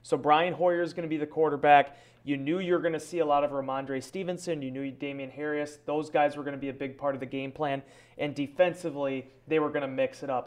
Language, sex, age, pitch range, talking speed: English, male, 30-49, 140-170 Hz, 265 wpm